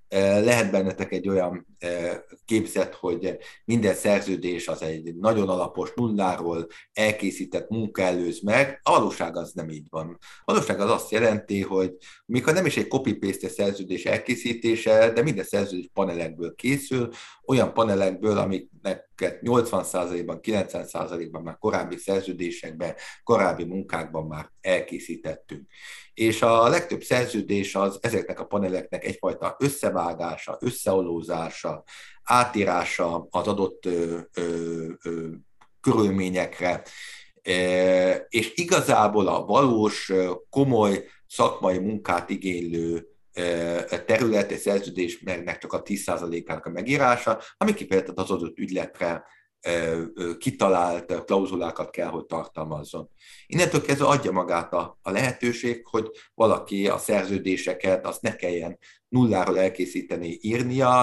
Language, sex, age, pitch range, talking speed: Hungarian, male, 60-79, 85-105 Hz, 110 wpm